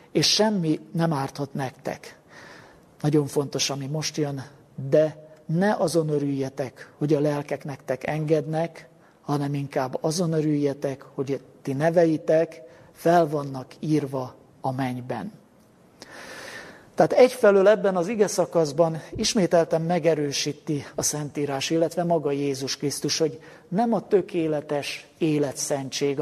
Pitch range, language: 145-170 Hz, Hungarian